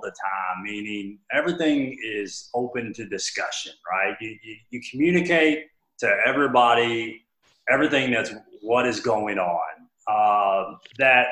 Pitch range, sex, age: 100-135 Hz, male, 30-49